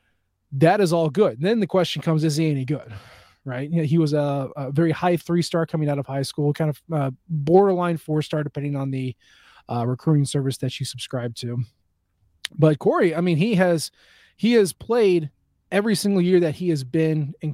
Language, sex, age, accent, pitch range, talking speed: English, male, 20-39, American, 140-175 Hz, 195 wpm